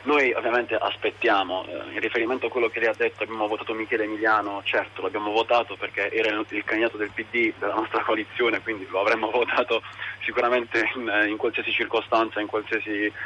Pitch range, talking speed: 105-135 Hz, 170 wpm